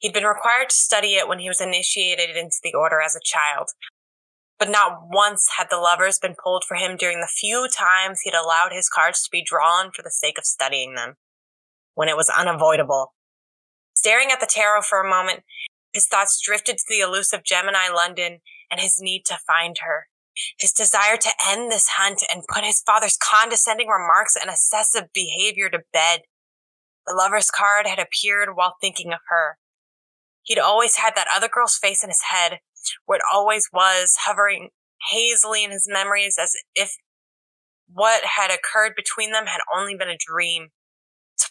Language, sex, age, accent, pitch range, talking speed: English, female, 20-39, American, 175-210 Hz, 180 wpm